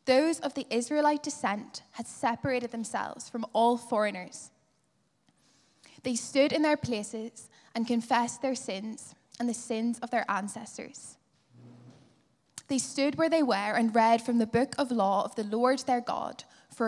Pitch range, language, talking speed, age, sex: 230-275 Hz, English, 155 wpm, 10-29, female